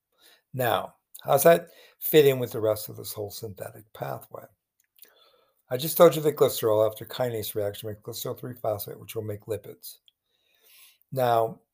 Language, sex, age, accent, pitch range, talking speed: English, male, 60-79, American, 105-130 Hz, 160 wpm